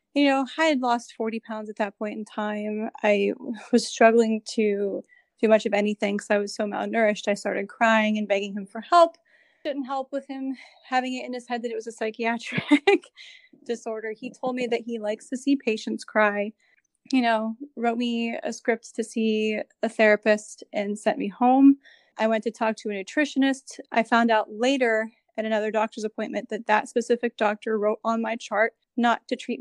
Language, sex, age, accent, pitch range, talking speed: English, female, 30-49, American, 215-250 Hz, 200 wpm